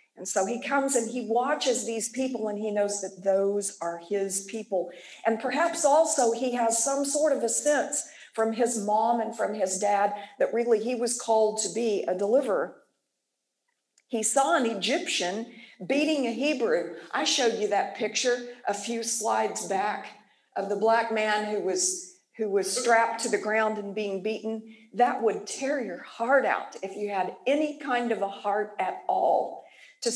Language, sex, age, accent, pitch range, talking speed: English, female, 50-69, American, 200-245 Hz, 180 wpm